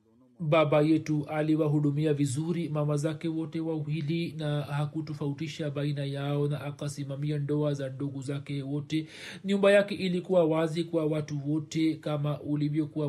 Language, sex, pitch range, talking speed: Swahili, male, 145-170 Hz, 135 wpm